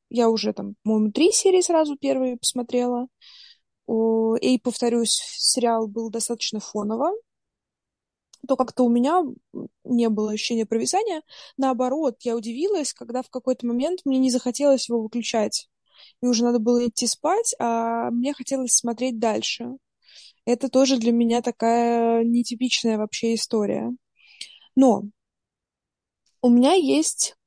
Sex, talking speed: female, 125 wpm